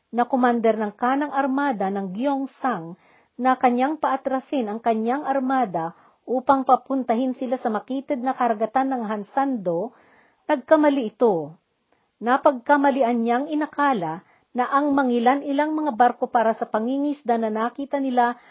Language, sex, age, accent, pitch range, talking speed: Filipino, female, 50-69, native, 220-280 Hz, 125 wpm